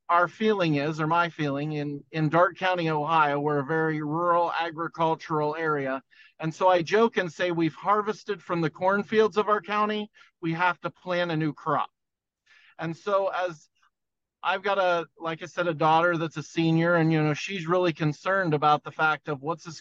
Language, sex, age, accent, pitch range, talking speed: English, male, 40-59, American, 150-180 Hz, 195 wpm